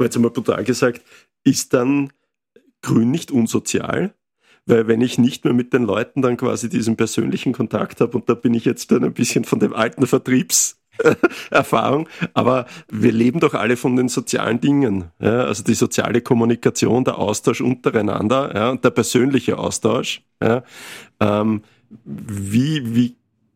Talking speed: 155 wpm